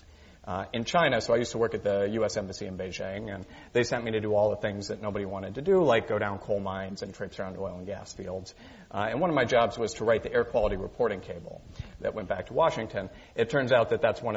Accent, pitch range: American, 100-120 Hz